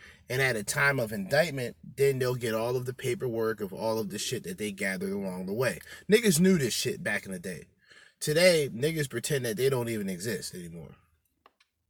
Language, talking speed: English, 205 wpm